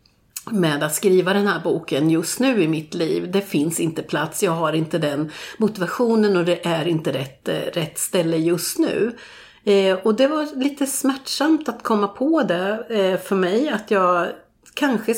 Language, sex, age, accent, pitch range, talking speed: Swedish, female, 40-59, native, 165-210 Hz, 180 wpm